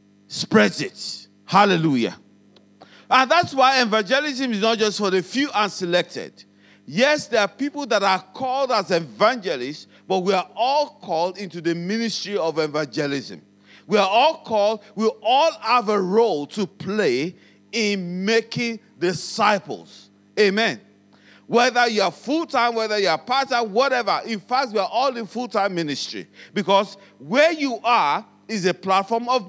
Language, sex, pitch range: English, male, 175-245 Hz